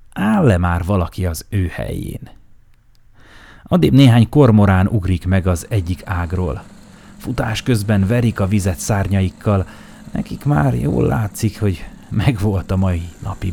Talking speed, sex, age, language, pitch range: 130 wpm, male, 30-49, Hungarian, 95-115 Hz